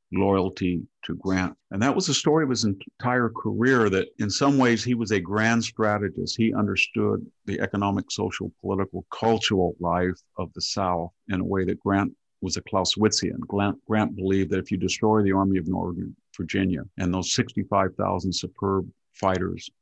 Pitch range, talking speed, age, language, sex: 90-105 Hz, 175 wpm, 50-69, English, male